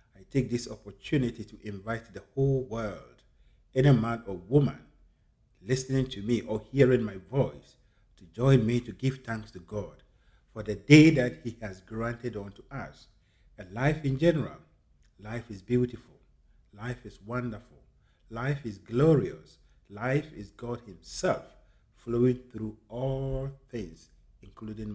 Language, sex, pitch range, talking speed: English, male, 105-130 Hz, 140 wpm